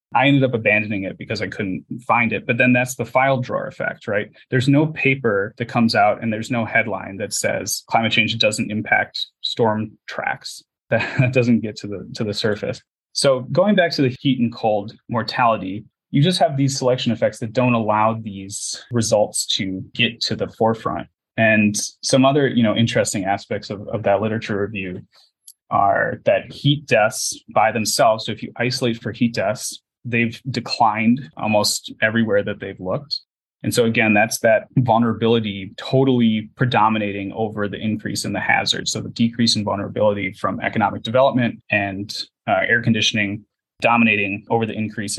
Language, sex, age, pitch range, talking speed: English, male, 20-39, 105-125 Hz, 175 wpm